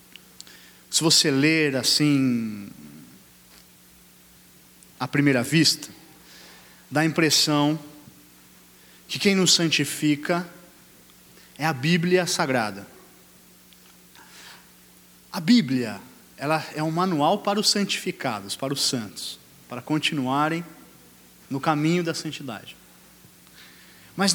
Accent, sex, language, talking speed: Brazilian, male, Portuguese, 90 wpm